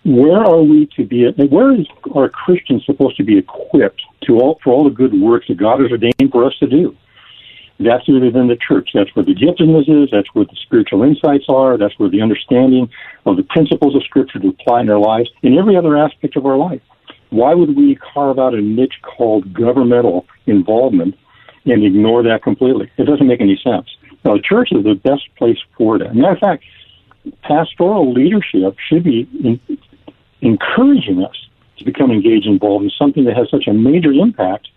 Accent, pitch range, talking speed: American, 120-175 Hz, 195 wpm